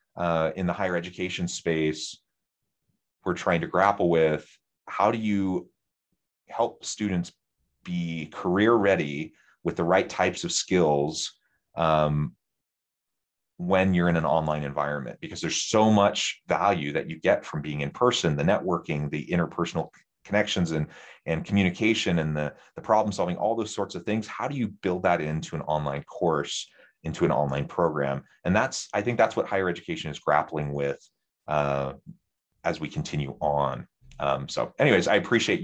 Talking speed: 160 wpm